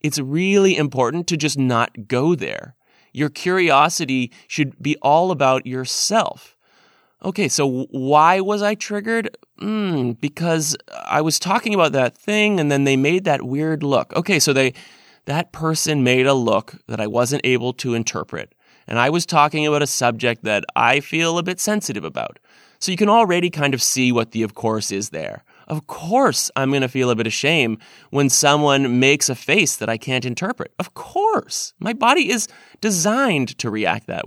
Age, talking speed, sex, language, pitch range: 20-39, 185 wpm, male, English, 125-185 Hz